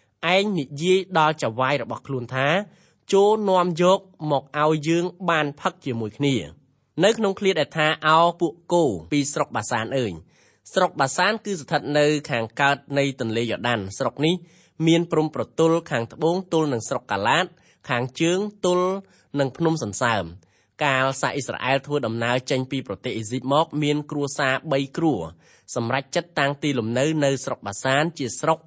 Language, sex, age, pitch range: English, male, 20-39, 130-165 Hz